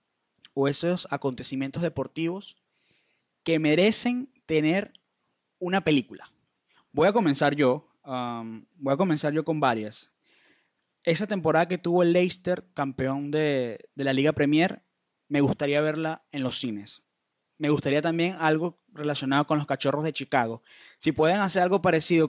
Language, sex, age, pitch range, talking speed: Spanish, male, 20-39, 135-170 Hz, 145 wpm